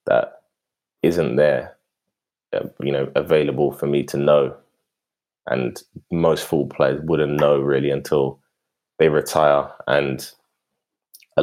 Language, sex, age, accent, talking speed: English, male, 20-39, British, 120 wpm